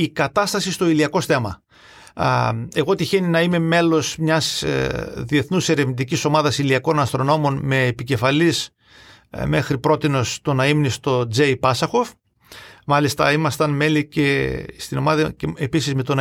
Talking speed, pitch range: 135 wpm, 135-175 Hz